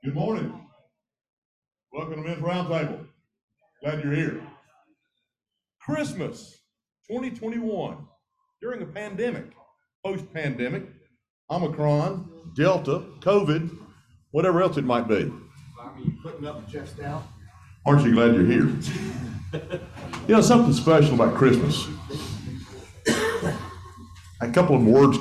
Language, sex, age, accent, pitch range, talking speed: English, male, 50-69, American, 110-180 Hz, 105 wpm